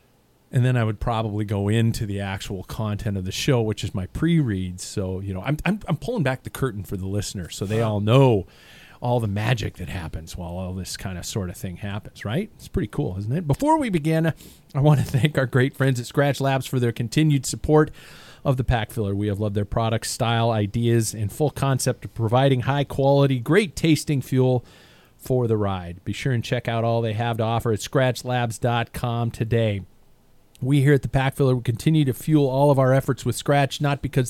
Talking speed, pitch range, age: 215 wpm, 105-135 Hz, 40-59